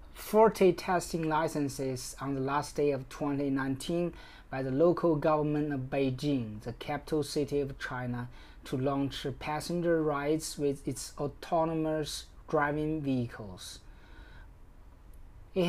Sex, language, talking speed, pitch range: male, English, 115 wpm, 135-165 Hz